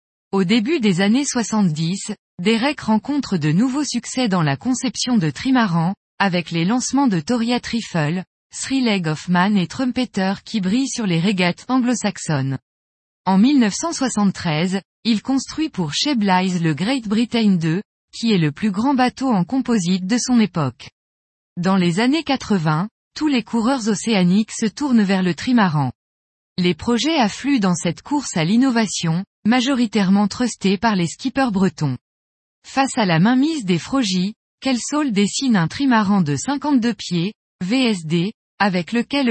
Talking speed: 150 wpm